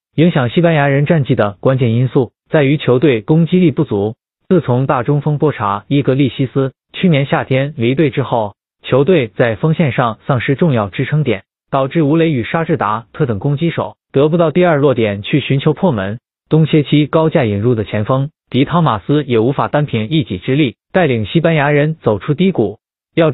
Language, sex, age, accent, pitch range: Chinese, male, 20-39, native, 120-160 Hz